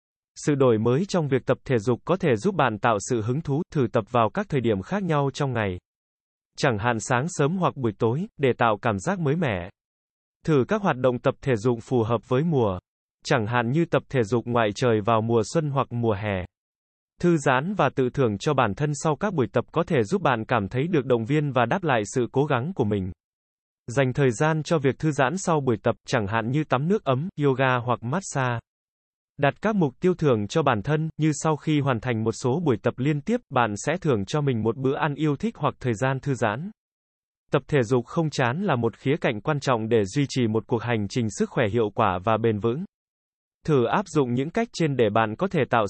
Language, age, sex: Vietnamese, 20-39, male